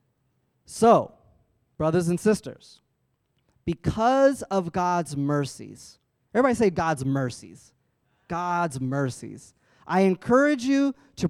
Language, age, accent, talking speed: English, 30-49, American, 95 wpm